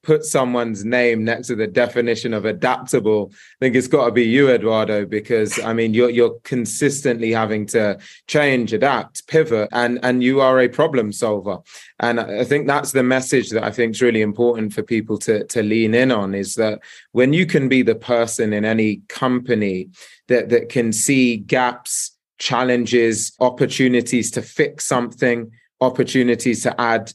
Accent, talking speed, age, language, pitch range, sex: British, 170 wpm, 20-39, English, 110-125 Hz, male